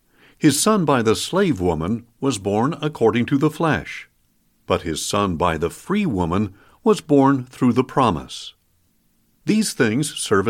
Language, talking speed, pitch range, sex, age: English, 155 wpm, 115-165 Hz, male, 60-79